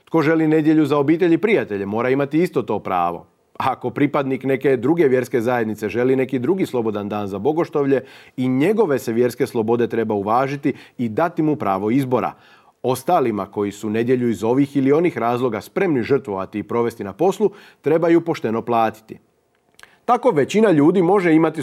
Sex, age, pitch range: male, 40-59, 115-155 Hz